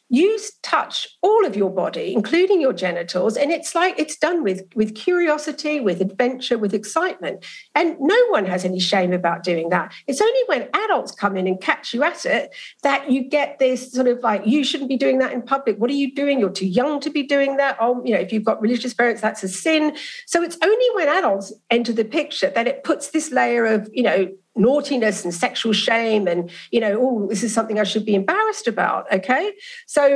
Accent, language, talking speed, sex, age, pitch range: British, English, 220 wpm, female, 50-69, 215-310 Hz